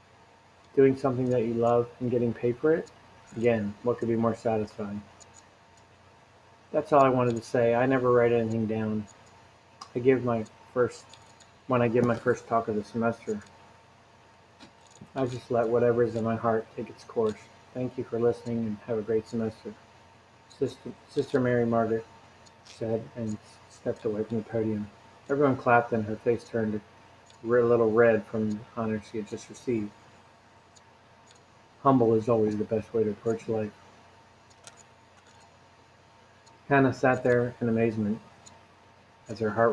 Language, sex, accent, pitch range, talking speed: English, male, American, 110-115 Hz, 155 wpm